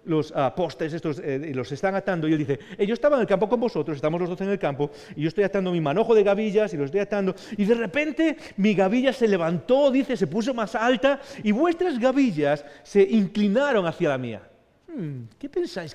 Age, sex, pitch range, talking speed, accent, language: 40-59, male, 160-230 Hz, 215 wpm, Spanish, English